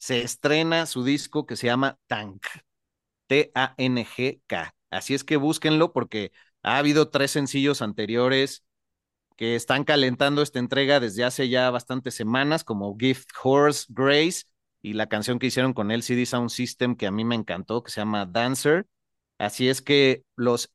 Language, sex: Spanish, male